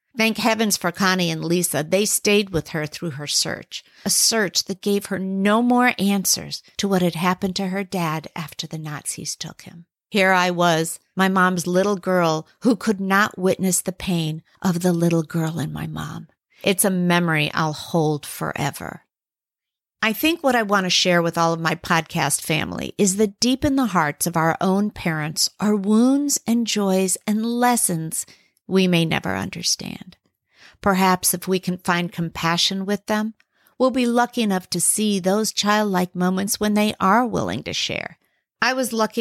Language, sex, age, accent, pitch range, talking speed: English, female, 50-69, American, 175-210 Hz, 180 wpm